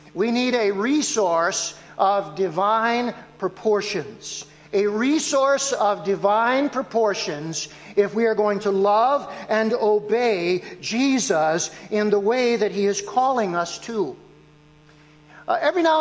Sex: male